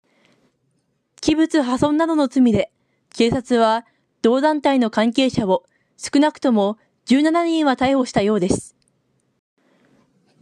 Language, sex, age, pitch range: Japanese, female, 20-39, 225-295 Hz